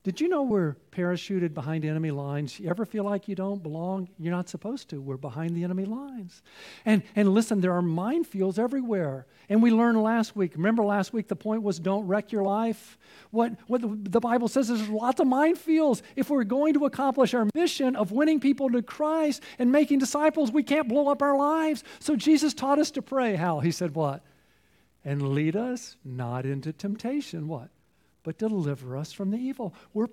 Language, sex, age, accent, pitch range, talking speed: English, male, 50-69, American, 185-270 Hz, 200 wpm